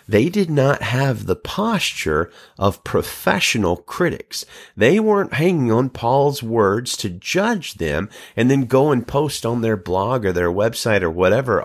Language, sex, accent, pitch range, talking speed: English, male, American, 100-160 Hz, 160 wpm